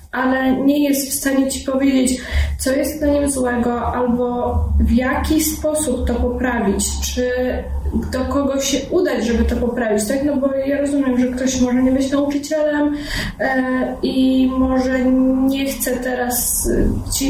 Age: 20-39